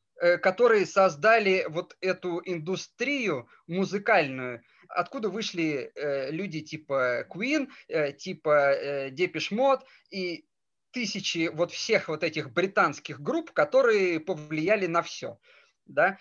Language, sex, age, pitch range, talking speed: Russian, male, 20-39, 155-210 Hz, 100 wpm